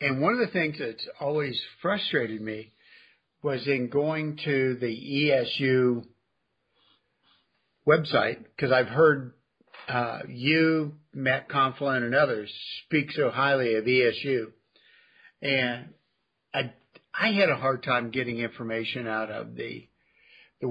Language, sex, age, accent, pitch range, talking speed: English, male, 60-79, American, 125-150 Hz, 125 wpm